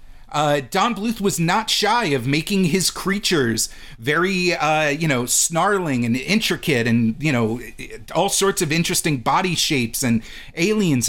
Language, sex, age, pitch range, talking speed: English, male, 40-59, 130-190 Hz, 150 wpm